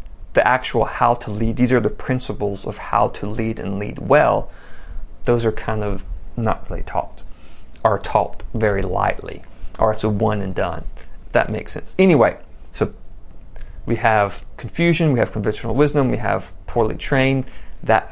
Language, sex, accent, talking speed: English, male, American, 170 wpm